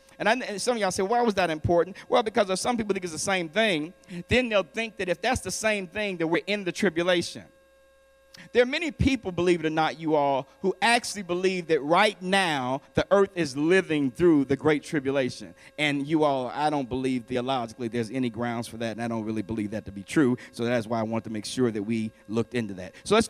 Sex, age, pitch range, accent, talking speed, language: male, 50-69, 155-225 Hz, American, 245 wpm, English